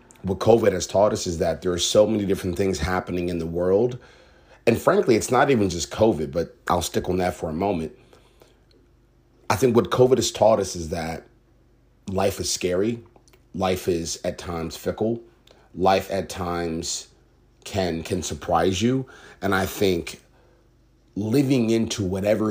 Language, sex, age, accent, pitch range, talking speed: English, male, 30-49, American, 85-110 Hz, 165 wpm